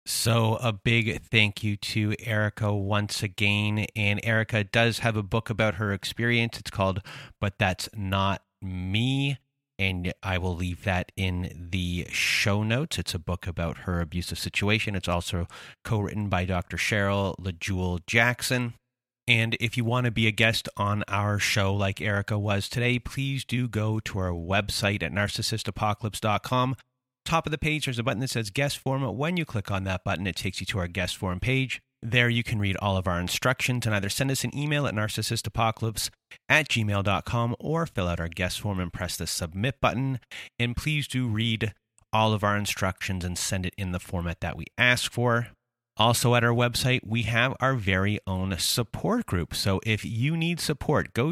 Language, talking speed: English, 185 wpm